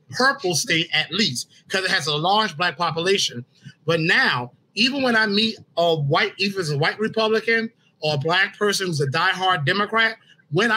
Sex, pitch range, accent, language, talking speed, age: male, 160-215 Hz, American, English, 185 wpm, 30-49